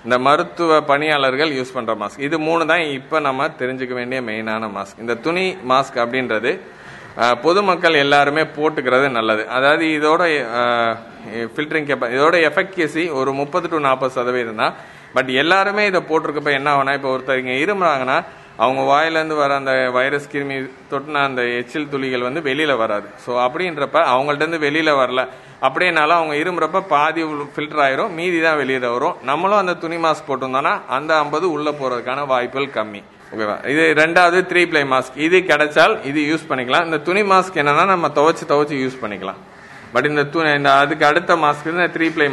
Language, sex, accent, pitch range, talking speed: Tamil, male, native, 130-160 Hz, 155 wpm